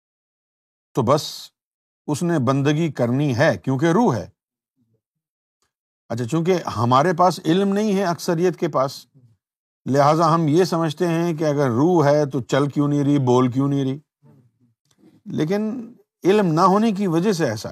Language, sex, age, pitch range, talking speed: Urdu, male, 50-69, 125-170 Hz, 155 wpm